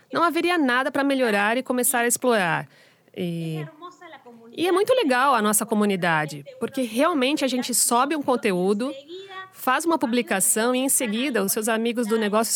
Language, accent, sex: Portuguese, Brazilian, female